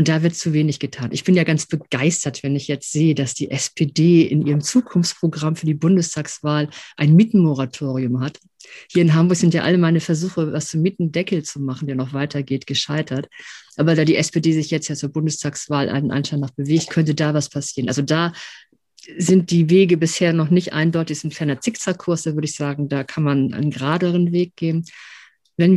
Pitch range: 145-170 Hz